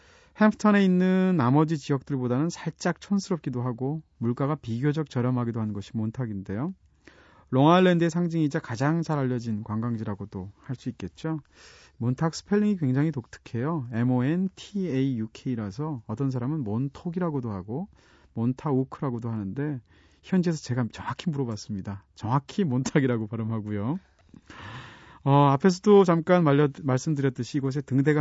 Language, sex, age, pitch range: Korean, male, 40-59, 115-160 Hz